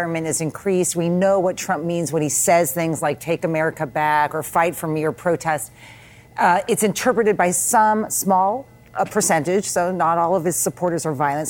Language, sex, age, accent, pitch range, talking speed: English, female, 40-59, American, 155-195 Hz, 195 wpm